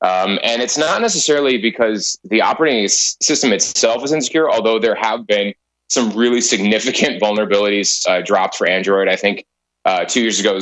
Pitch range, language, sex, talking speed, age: 95-120 Hz, English, male, 170 wpm, 30-49